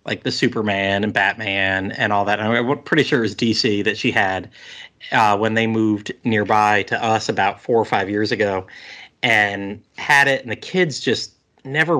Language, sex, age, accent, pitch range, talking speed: English, male, 30-49, American, 100-120 Hz, 195 wpm